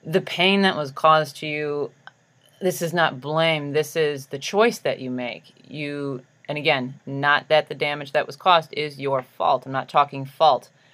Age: 30-49